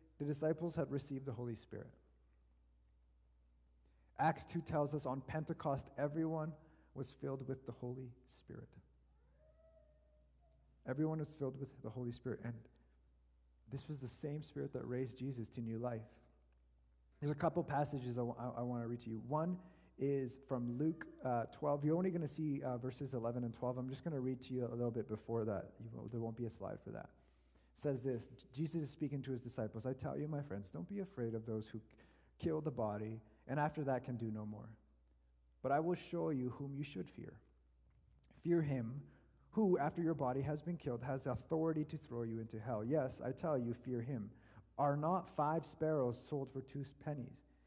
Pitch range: 110-150 Hz